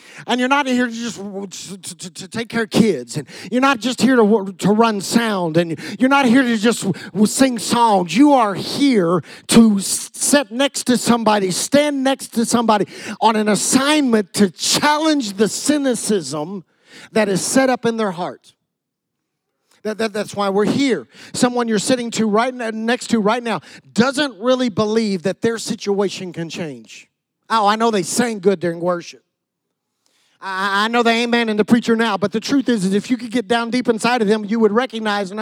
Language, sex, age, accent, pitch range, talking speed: English, male, 50-69, American, 205-255 Hz, 190 wpm